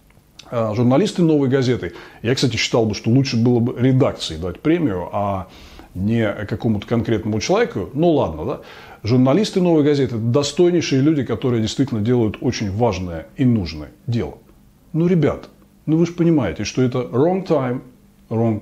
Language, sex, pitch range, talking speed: Russian, male, 115-150 Hz, 150 wpm